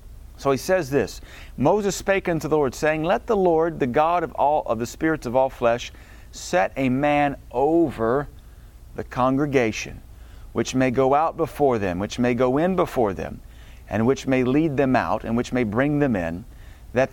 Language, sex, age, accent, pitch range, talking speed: English, male, 40-59, American, 105-145 Hz, 190 wpm